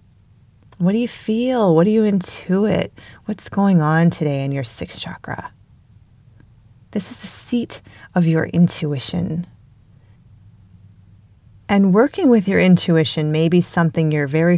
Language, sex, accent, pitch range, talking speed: English, female, American, 120-185 Hz, 135 wpm